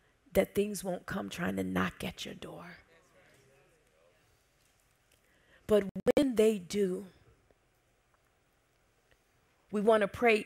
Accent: American